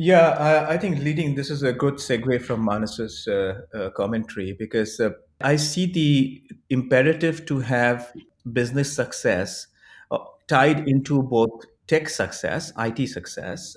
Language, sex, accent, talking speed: English, male, Indian, 145 wpm